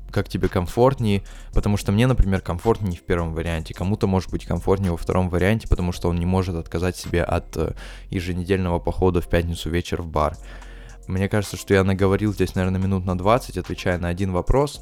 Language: Russian